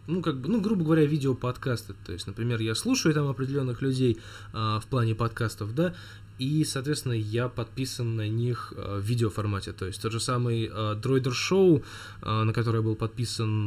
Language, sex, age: Russian, male, 10-29